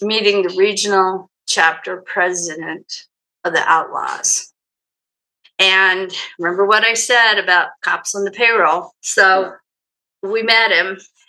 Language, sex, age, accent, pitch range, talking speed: English, female, 50-69, American, 180-225 Hz, 115 wpm